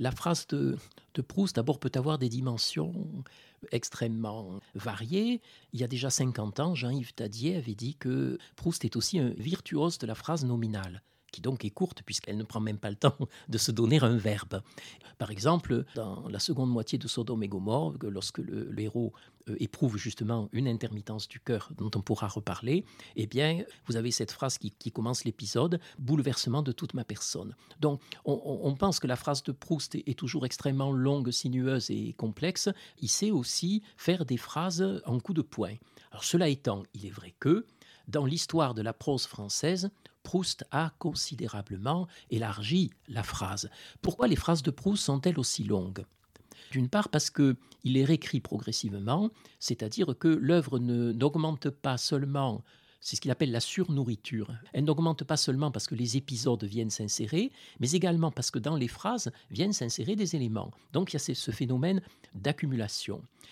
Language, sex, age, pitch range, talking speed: French, male, 50-69, 115-155 Hz, 180 wpm